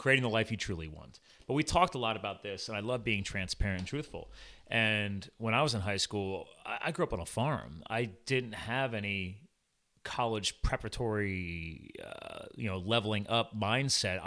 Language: English